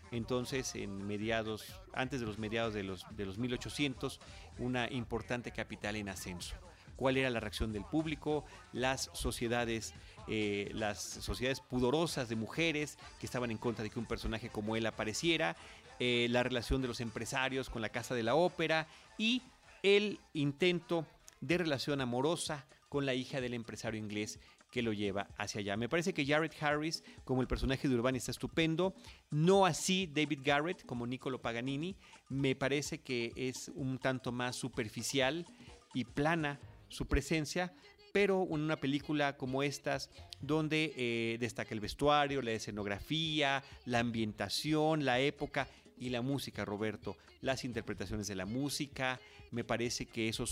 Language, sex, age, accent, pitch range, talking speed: Spanish, male, 40-59, Mexican, 110-145 Hz, 155 wpm